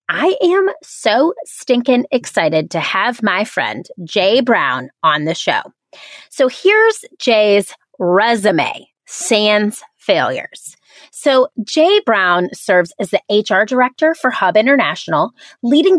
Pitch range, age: 195-300 Hz, 30-49